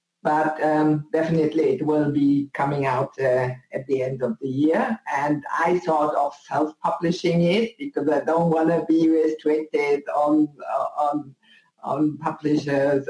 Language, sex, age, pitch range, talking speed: English, female, 50-69, 140-175 Hz, 145 wpm